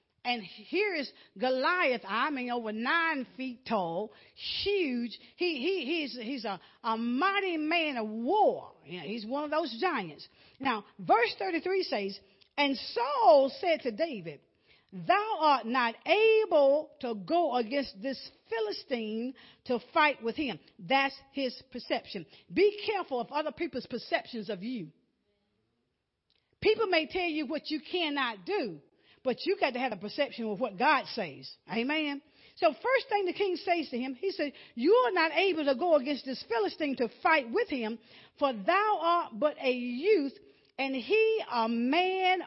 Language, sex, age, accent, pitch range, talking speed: English, female, 50-69, American, 245-340 Hz, 160 wpm